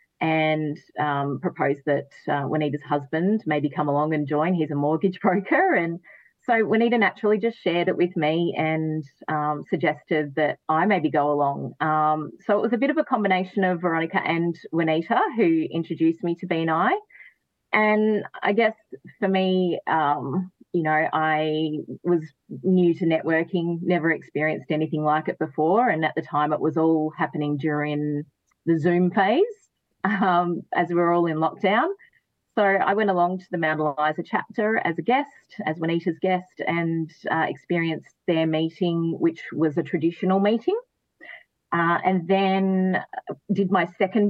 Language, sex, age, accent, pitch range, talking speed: English, female, 30-49, Australian, 155-195 Hz, 160 wpm